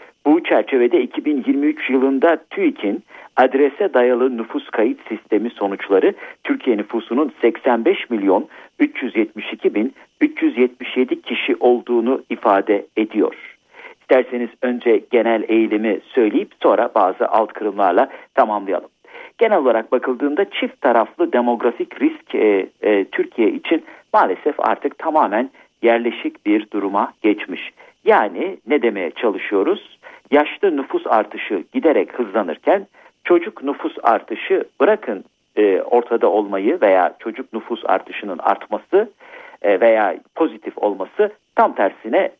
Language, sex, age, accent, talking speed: Turkish, male, 50-69, native, 105 wpm